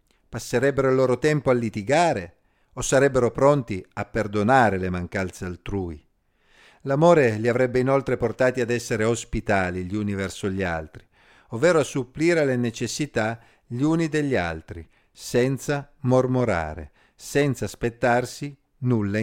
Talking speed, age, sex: 130 wpm, 50-69, male